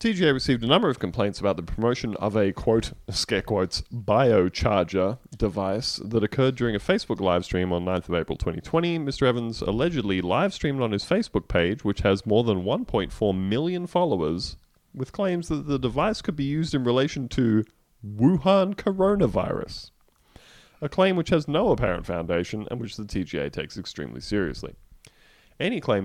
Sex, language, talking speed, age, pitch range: male, English, 170 wpm, 30-49, 90-125 Hz